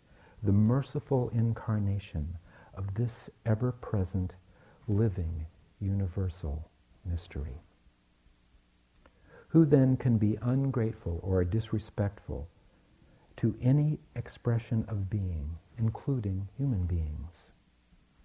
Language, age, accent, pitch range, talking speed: English, 60-79, American, 85-115 Hz, 80 wpm